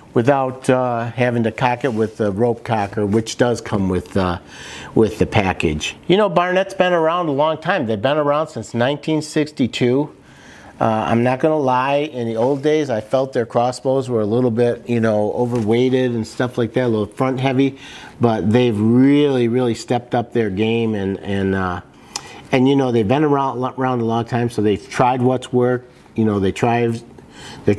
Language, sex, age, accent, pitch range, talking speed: English, male, 50-69, American, 110-135 Hz, 195 wpm